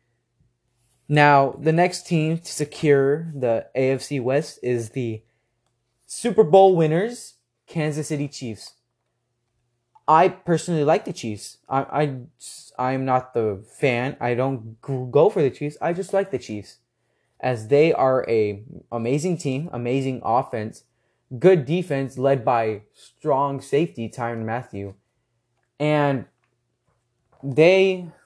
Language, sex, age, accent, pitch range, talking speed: English, male, 20-39, American, 120-150 Hz, 120 wpm